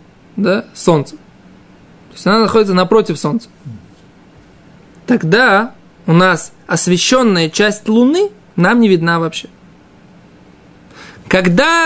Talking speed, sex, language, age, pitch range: 95 wpm, male, Russian, 20-39, 175-235 Hz